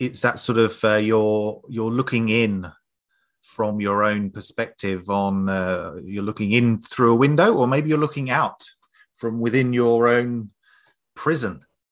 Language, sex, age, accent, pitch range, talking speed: English, male, 30-49, British, 100-130 Hz, 155 wpm